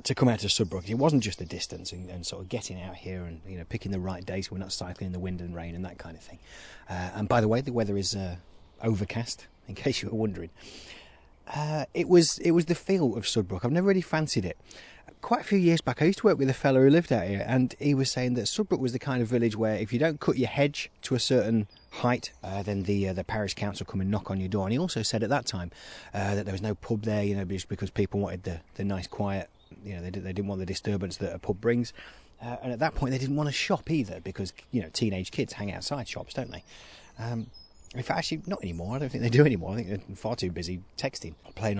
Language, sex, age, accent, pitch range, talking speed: English, male, 30-49, British, 95-140 Hz, 285 wpm